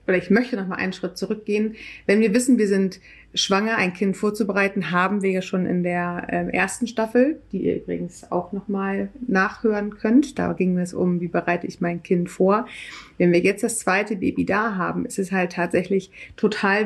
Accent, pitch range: German, 180-215 Hz